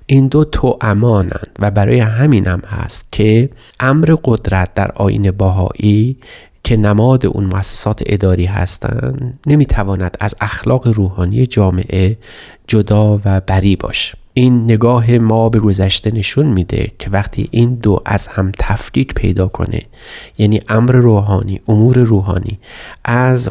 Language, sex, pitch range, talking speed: Persian, male, 95-120 Hz, 135 wpm